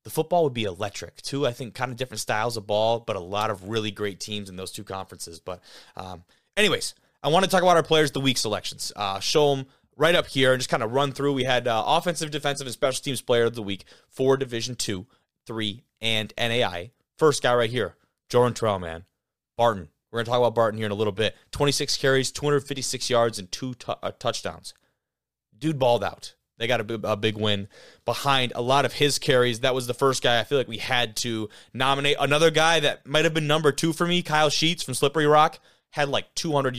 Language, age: English, 30-49